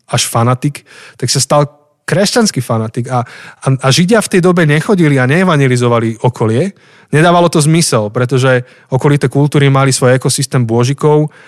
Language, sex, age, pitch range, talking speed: Slovak, male, 30-49, 120-150 Hz, 145 wpm